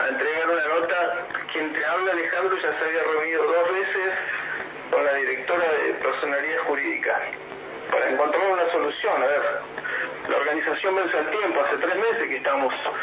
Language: English